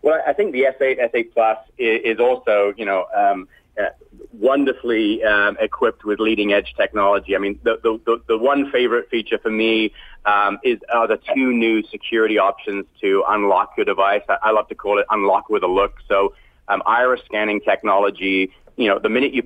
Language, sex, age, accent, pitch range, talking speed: English, male, 30-49, American, 100-135 Hz, 190 wpm